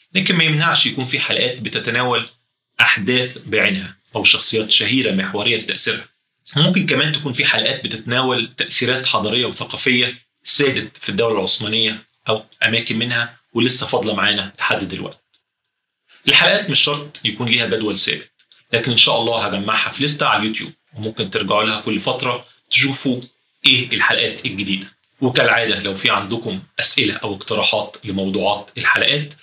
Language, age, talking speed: Arabic, 30-49, 145 wpm